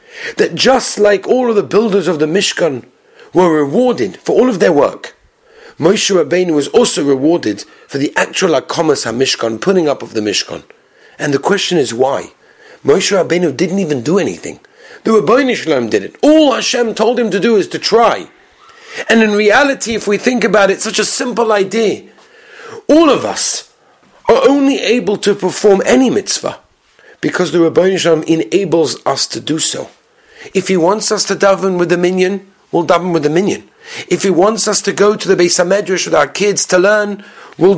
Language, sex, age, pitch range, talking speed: English, male, 50-69, 170-230 Hz, 185 wpm